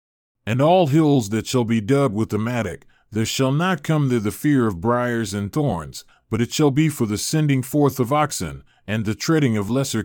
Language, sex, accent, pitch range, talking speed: English, male, American, 110-140 Hz, 215 wpm